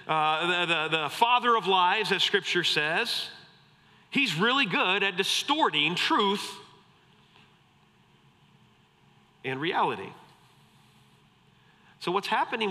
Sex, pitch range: male, 125-180 Hz